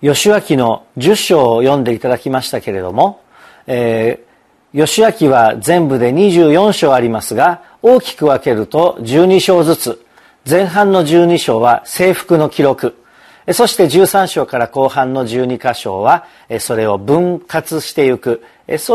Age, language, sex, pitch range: 50-69, Japanese, male, 125-180 Hz